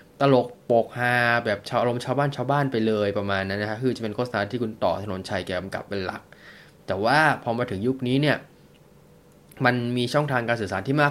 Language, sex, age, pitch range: Thai, male, 20-39, 115-145 Hz